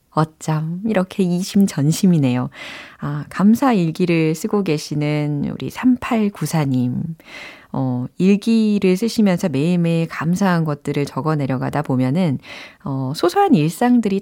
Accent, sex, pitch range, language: native, female, 150-215 Hz, Korean